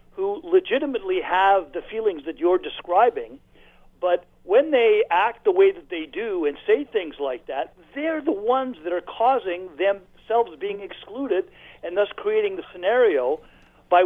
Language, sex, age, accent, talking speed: English, male, 50-69, American, 160 wpm